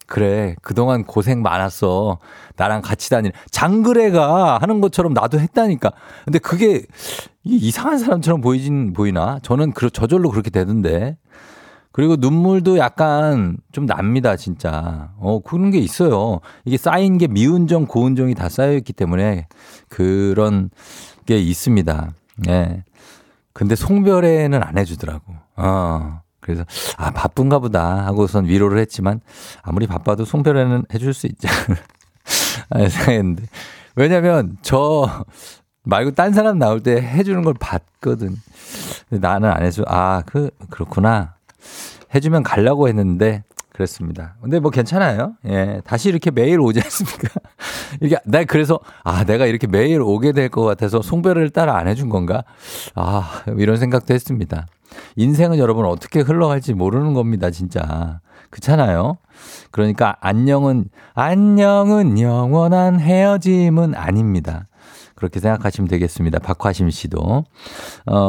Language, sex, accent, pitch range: Korean, male, native, 95-150 Hz